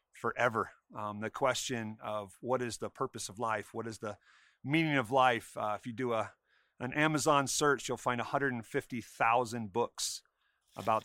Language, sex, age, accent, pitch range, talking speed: English, male, 40-59, American, 110-135 Hz, 165 wpm